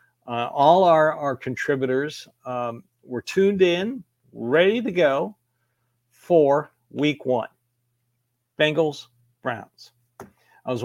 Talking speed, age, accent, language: 100 wpm, 60-79, American, English